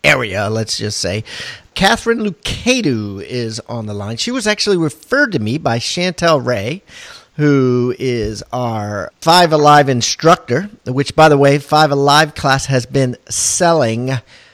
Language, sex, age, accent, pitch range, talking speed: English, male, 40-59, American, 125-160 Hz, 145 wpm